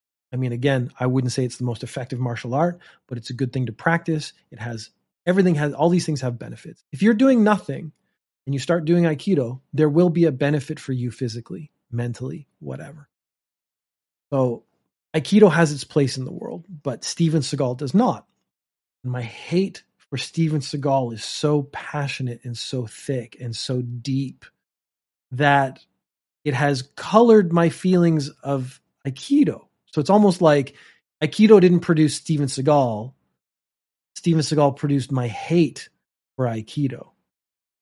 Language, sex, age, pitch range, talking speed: English, male, 30-49, 125-165 Hz, 155 wpm